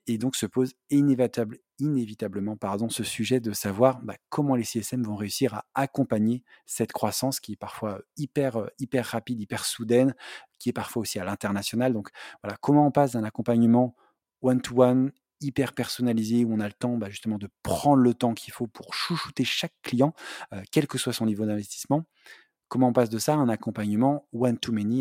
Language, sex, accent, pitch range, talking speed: French, male, French, 110-130 Hz, 185 wpm